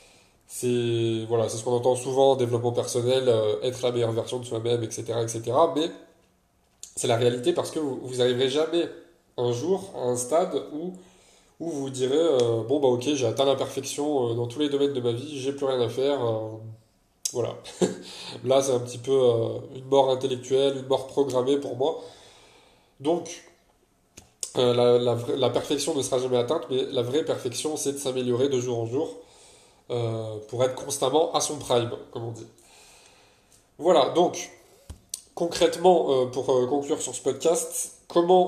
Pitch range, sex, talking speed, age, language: 120-145 Hz, male, 180 wpm, 20-39, French